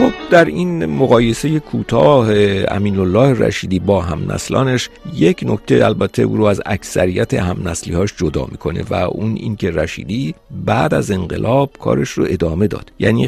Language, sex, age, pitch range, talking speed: Persian, male, 50-69, 90-115 Hz, 155 wpm